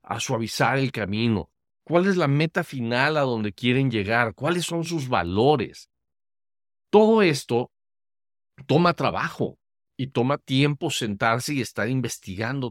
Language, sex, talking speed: Spanish, male, 130 wpm